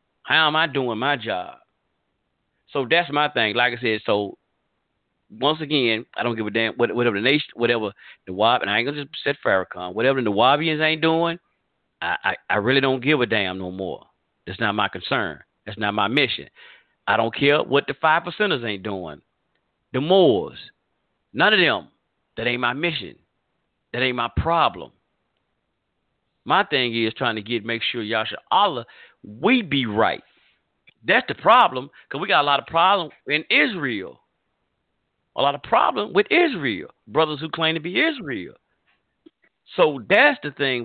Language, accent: English, American